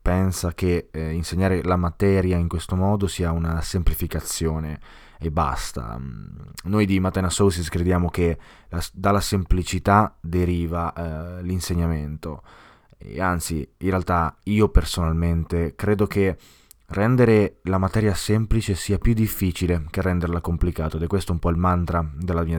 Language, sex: Italian, male